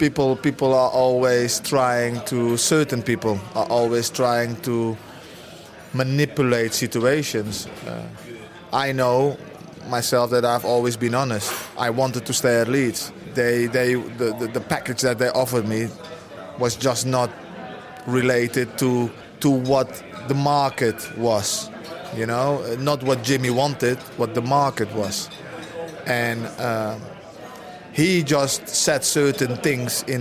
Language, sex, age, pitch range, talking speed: English, male, 20-39, 120-140 Hz, 130 wpm